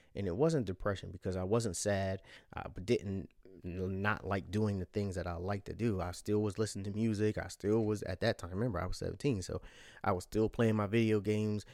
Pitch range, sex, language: 90-110 Hz, male, English